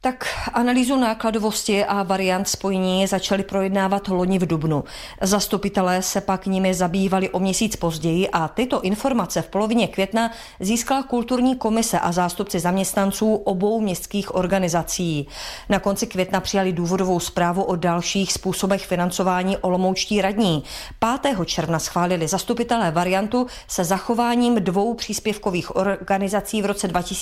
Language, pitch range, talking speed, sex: Czech, 185-225 Hz, 130 wpm, female